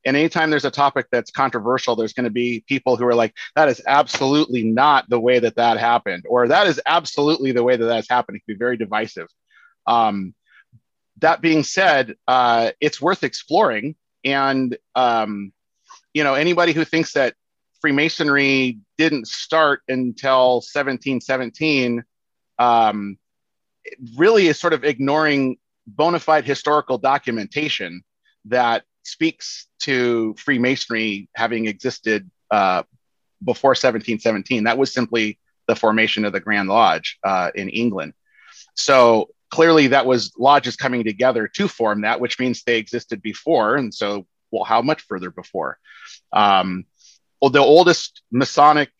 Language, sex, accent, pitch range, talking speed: English, male, American, 110-140 Hz, 140 wpm